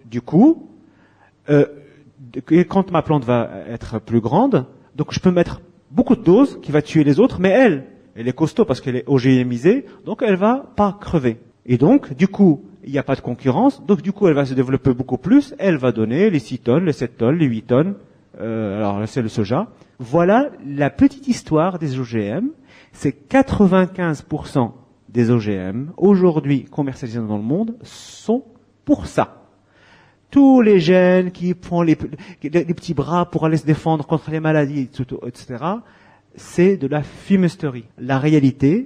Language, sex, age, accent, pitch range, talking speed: French, male, 40-59, French, 125-175 Hz, 180 wpm